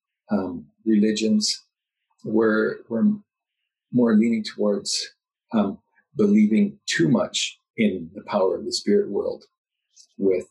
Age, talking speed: 40-59, 110 wpm